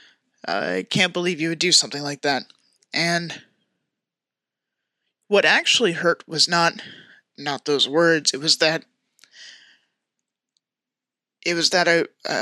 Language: English